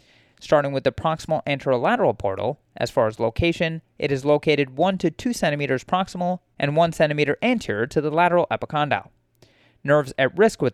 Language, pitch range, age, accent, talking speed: English, 140-175 Hz, 30-49, American, 170 wpm